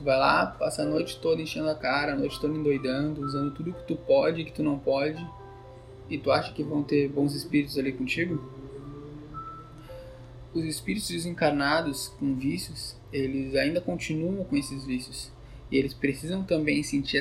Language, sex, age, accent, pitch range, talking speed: Portuguese, male, 20-39, Brazilian, 130-155 Hz, 170 wpm